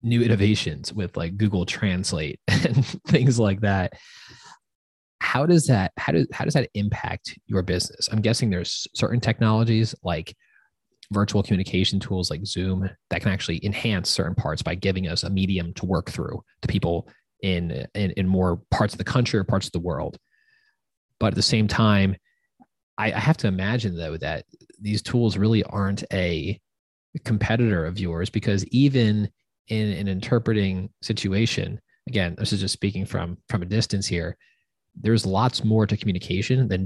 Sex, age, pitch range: male, 20-39, 95-115 Hz